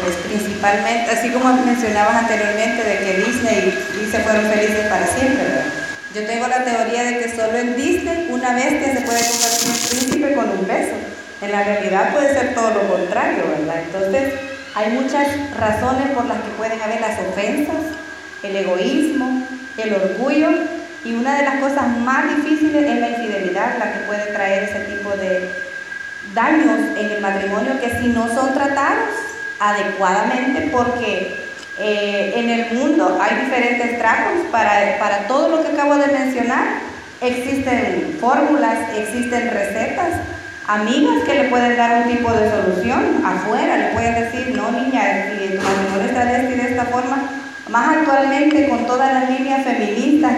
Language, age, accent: Spanish, 40-59, American